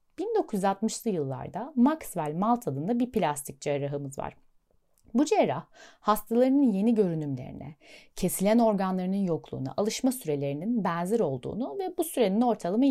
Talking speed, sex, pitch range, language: 115 wpm, female, 180-270 Hz, Turkish